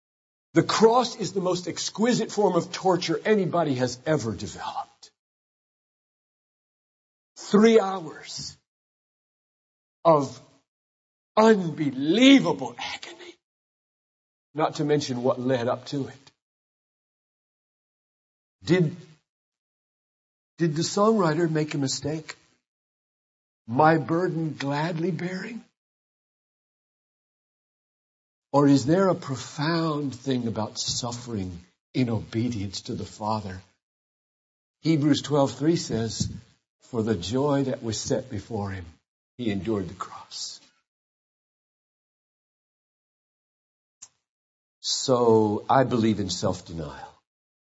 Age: 50-69